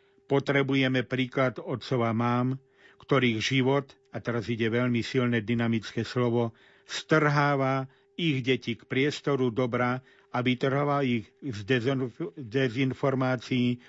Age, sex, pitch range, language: 50-69, male, 120-140 Hz, Slovak